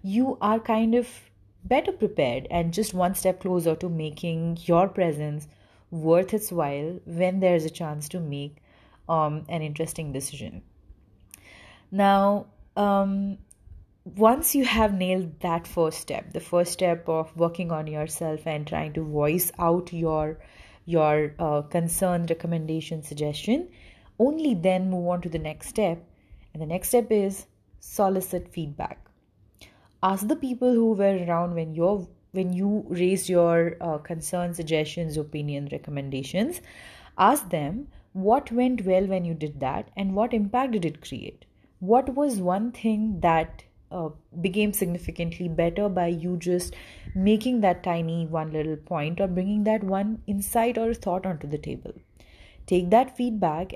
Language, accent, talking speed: English, Indian, 150 wpm